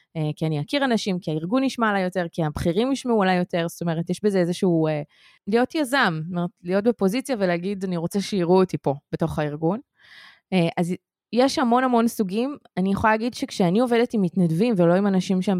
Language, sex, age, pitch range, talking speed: Hebrew, female, 20-39, 170-225 Hz, 195 wpm